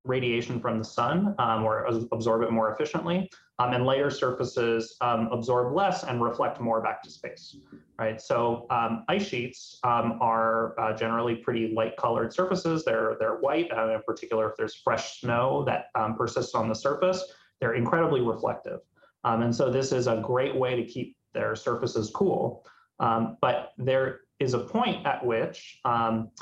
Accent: American